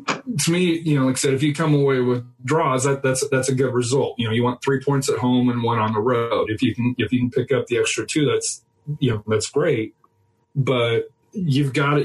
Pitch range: 110-135 Hz